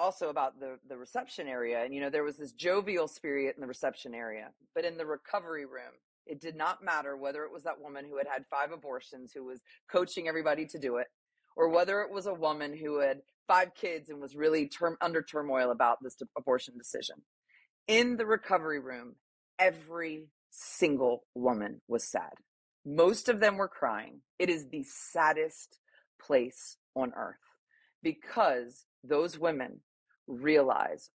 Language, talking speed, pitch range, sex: English, 170 wpm, 135-185 Hz, female